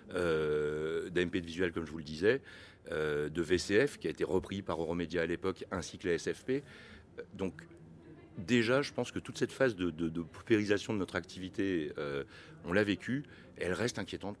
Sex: male